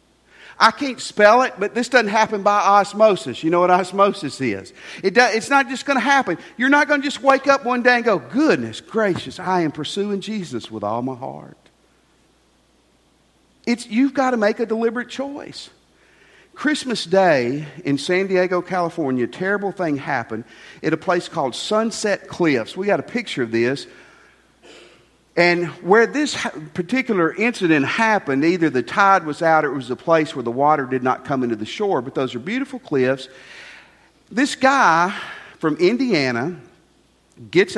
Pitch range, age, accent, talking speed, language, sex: 145-225 Hz, 50-69, American, 170 wpm, English, male